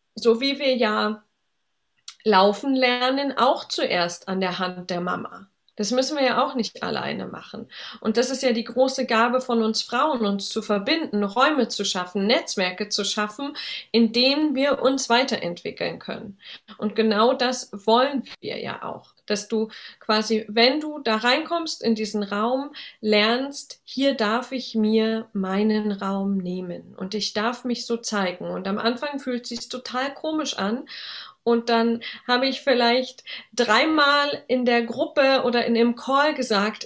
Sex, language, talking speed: female, German, 165 wpm